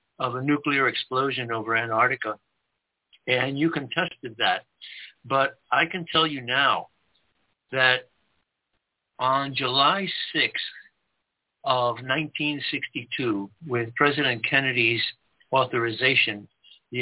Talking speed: 95 wpm